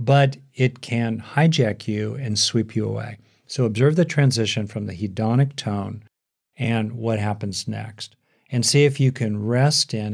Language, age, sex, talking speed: English, 50-69, male, 165 wpm